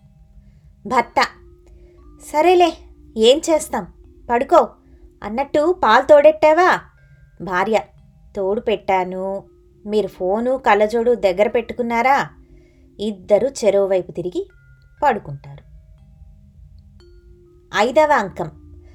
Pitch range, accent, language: 175-260 Hz, native, Telugu